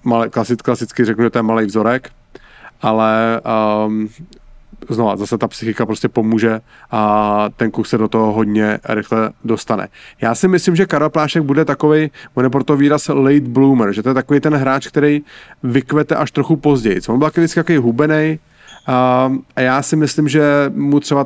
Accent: Czech